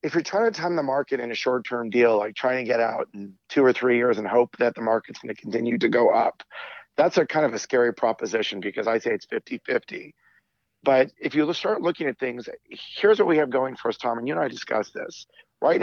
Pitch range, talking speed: 115-150 Hz, 250 wpm